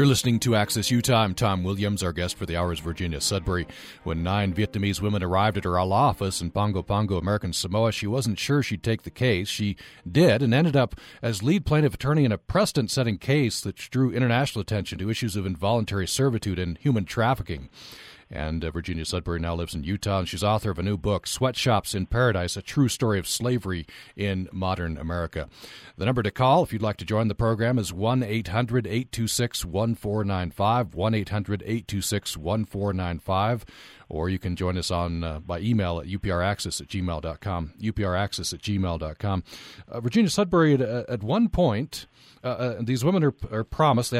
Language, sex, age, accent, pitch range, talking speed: English, male, 40-59, American, 90-120 Hz, 185 wpm